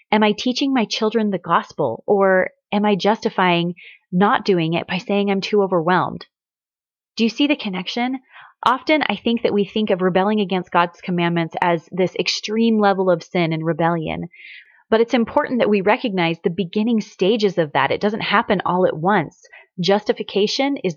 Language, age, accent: English, 30-49, American